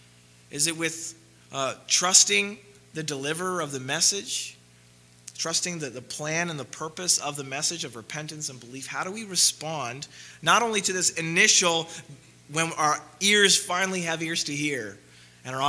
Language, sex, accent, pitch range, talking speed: English, male, American, 115-170 Hz, 165 wpm